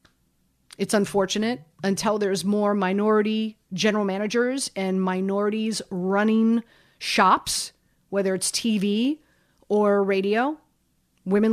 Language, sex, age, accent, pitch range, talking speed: English, female, 30-49, American, 205-270 Hz, 95 wpm